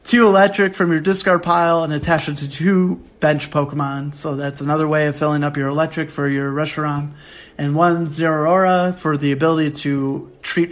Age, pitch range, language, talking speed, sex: 30-49, 145-180 Hz, English, 185 wpm, male